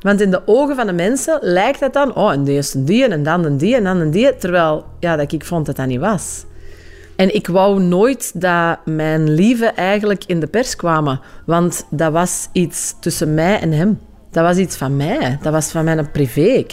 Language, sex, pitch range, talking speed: Dutch, female, 160-220 Hz, 230 wpm